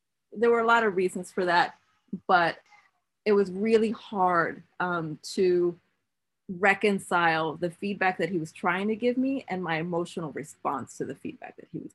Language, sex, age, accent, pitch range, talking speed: English, female, 30-49, American, 195-305 Hz, 175 wpm